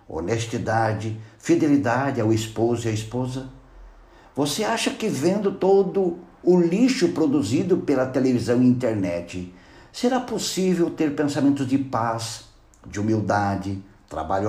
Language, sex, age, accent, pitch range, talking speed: Portuguese, male, 60-79, Brazilian, 100-170 Hz, 115 wpm